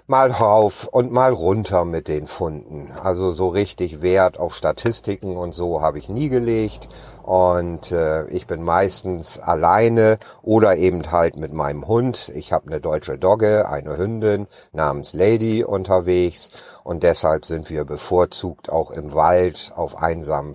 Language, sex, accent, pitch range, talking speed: German, male, German, 80-105 Hz, 150 wpm